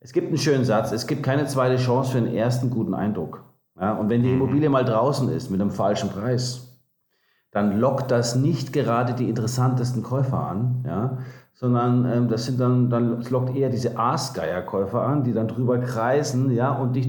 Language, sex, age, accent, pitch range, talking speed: German, male, 50-69, German, 115-140 Hz, 200 wpm